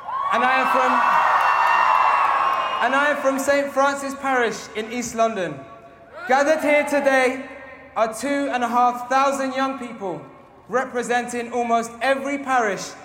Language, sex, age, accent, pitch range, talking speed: English, male, 20-39, British, 220-265 Hz, 120 wpm